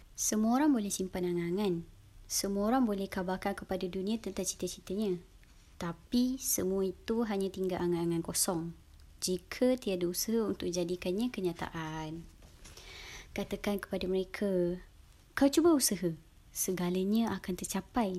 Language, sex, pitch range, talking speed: Malay, male, 175-205 Hz, 115 wpm